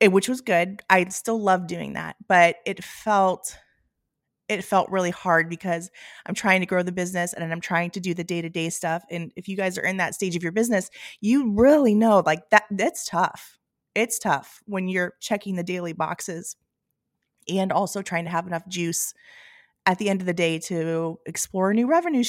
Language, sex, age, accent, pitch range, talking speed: English, female, 30-49, American, 170-205 Hz, 200 wpm